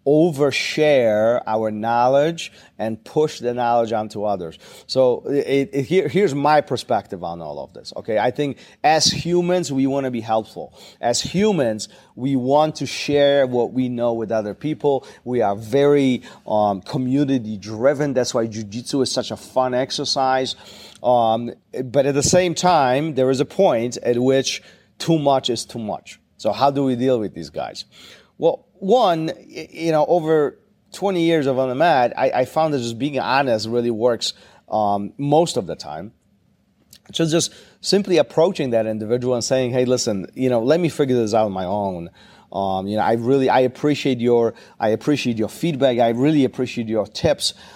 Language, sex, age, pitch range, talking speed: English, male, 40-59, 115-145 Hz, 180 wpm